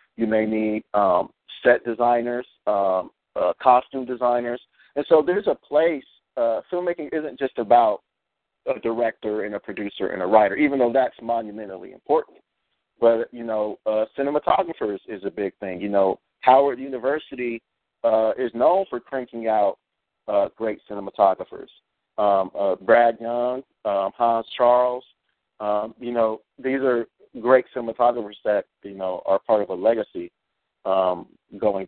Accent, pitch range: American, 110-135 Hz